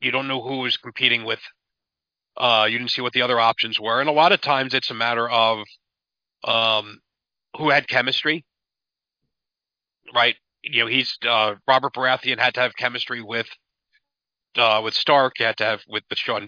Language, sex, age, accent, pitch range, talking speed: English, male, 40-59, American, 115-135 Hz, 185 wpm